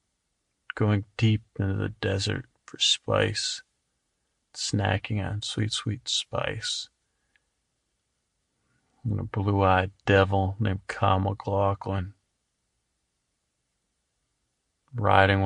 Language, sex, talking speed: English, male, 80 wpm